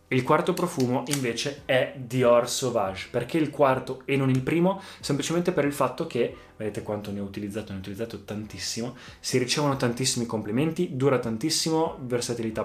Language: Italian